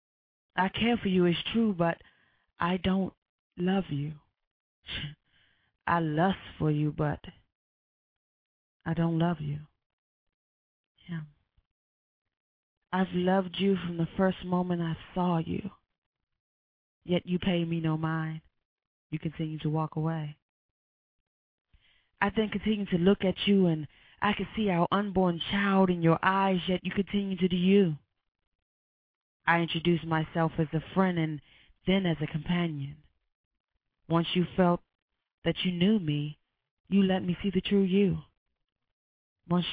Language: English